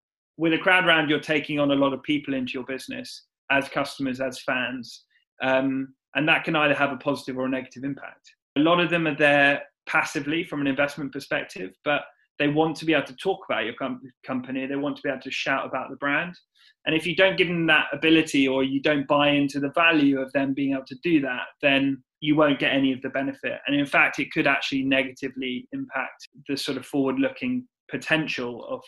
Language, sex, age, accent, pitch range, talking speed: English, male, 20-39, British, 135-160 Hz, 220 wpm